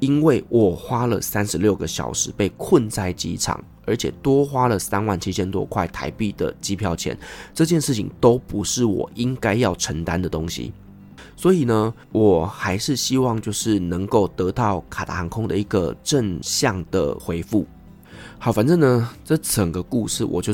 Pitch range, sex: 90-115 Hz, male